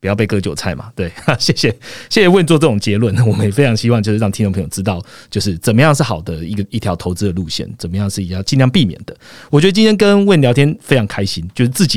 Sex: male